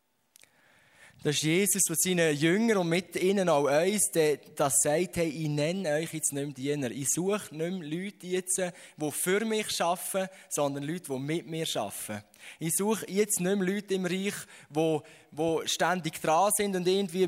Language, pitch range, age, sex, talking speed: German, 150-190 Hz, 20-39, male, 185 wpm